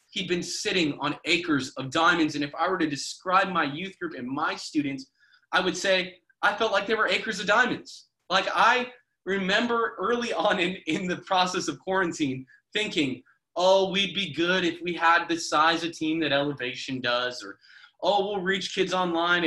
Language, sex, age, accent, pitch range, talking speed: English, male, 20-39, American, 145-185 Hz, 190 wpm